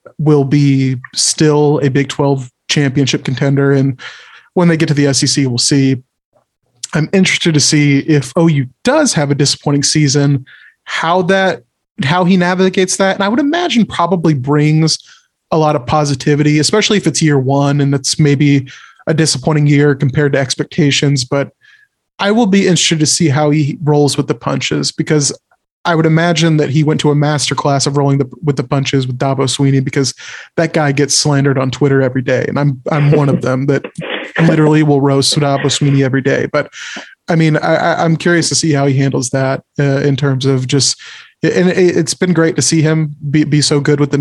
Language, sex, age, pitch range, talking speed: English, male, 30-49, 140-155 Hz, 195 wpm